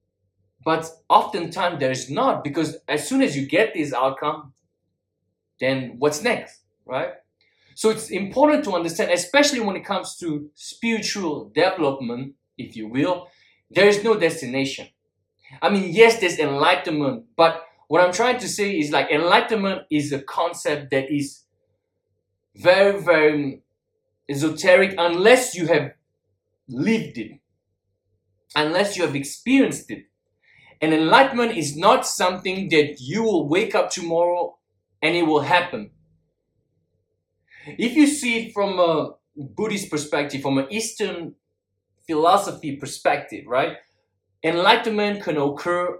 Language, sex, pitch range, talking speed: English, male, 135-200 Hz, 130 wpm